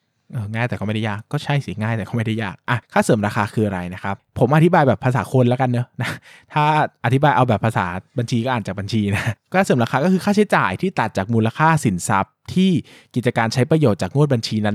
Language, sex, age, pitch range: Thai, male, 20-39, 110-150 Hz